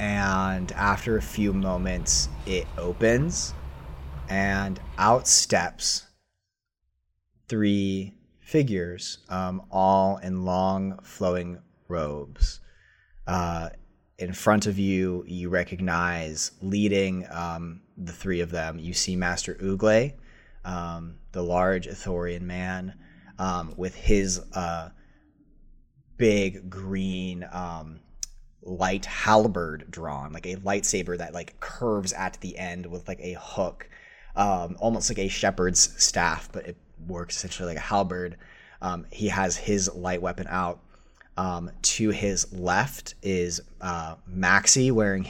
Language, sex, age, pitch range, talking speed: English, male, 30-49, 85-95 Hz, 120 wpm